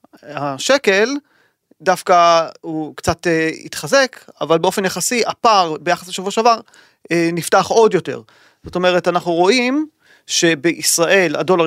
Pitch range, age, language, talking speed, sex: 165-205 Hz, 30-49, Hebrew, 110 wpm, male